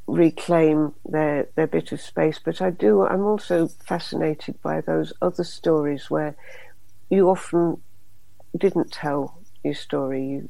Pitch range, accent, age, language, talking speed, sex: 145-175 Hz, British, 60-79, English, 135 wpm, female